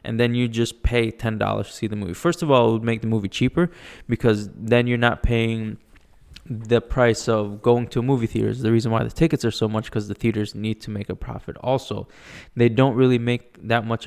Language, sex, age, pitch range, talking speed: English, male, 20-39, 110-125 Hz, 240 wpm